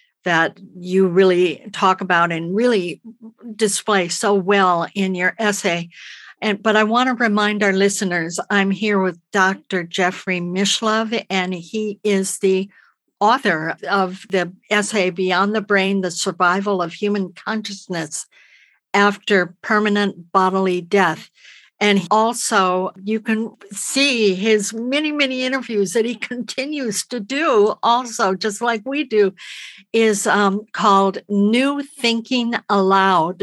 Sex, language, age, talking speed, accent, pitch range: female, English, 60-79, 130 wpm, American, 185-225 Hz